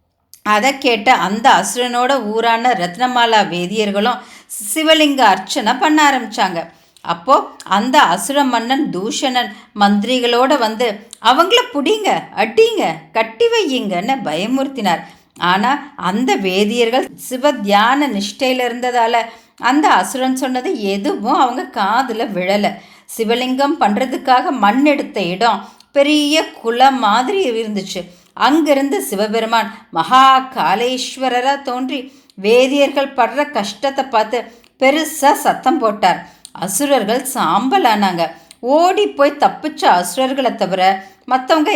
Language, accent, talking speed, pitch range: Tamil, native, 95 wpm, 205-275 Hz